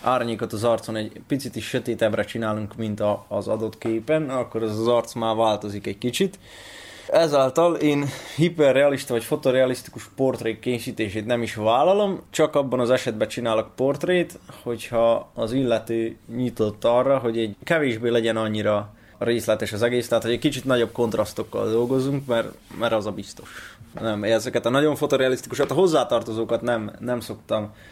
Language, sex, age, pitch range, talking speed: Hungarian, male, 20-39, 110-130 Hz, 155 wpm